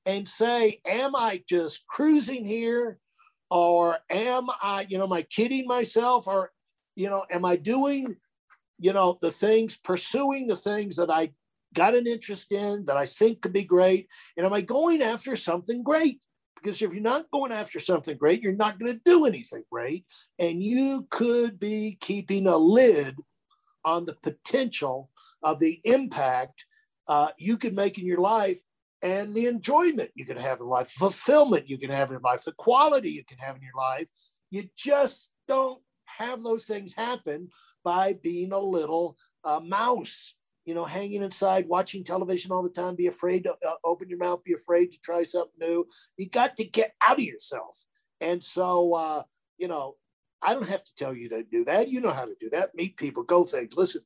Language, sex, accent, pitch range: English, male, American, 170-240 Hz